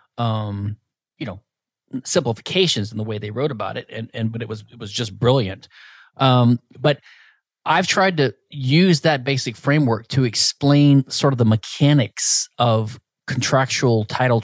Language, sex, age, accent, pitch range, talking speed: English, male, 30-49, American, 115-145 Hz, 160 wpm